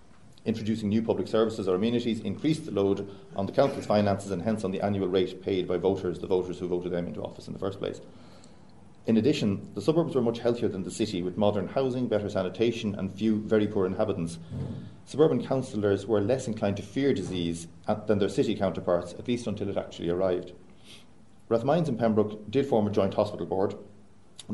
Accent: Irish